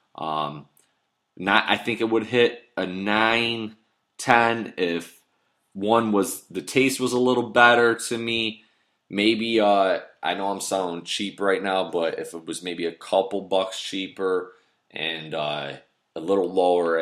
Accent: American